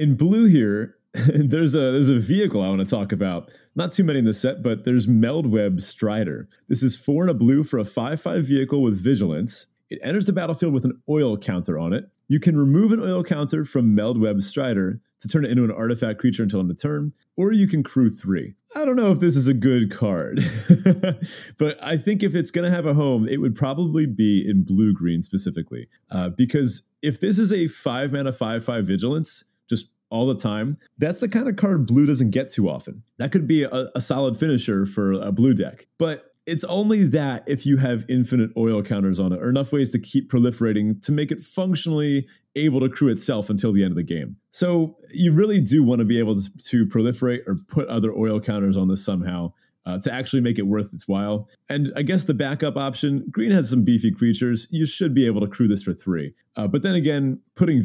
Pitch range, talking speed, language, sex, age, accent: 110-155 Hz, 225 wpm, English, male, 30-49, American